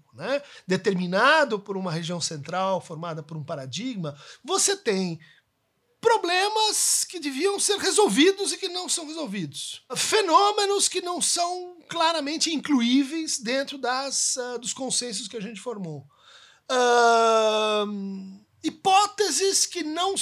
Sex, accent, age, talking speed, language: male, Brazilian, 50-69, 115 wpm, Portuguese